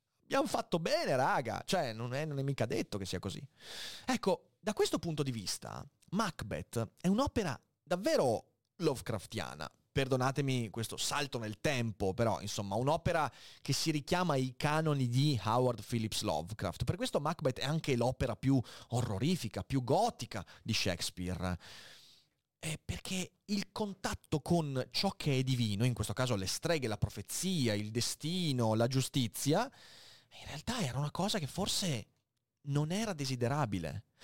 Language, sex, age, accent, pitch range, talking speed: Italian, male, 30-49, native, 115-175 Hz, 145 wpm